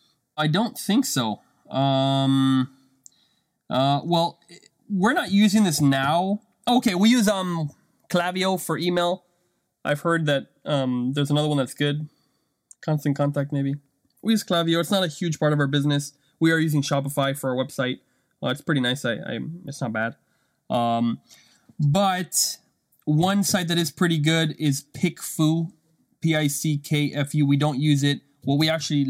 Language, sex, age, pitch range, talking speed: English, male, 20-39, 130-170 Hz, 155 wpm